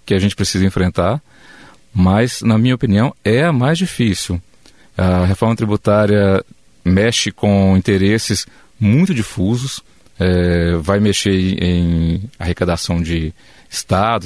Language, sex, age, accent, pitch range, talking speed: Portuguese, male, 40-59, Brazilian, 95-130 Hz, 115 wpm